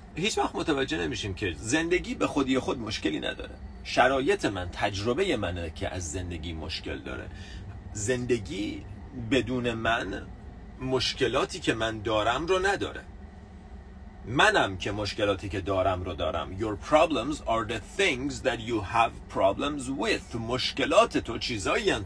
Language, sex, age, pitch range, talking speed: Persian, male, 40-59, 95-145 Hz, 135 wpm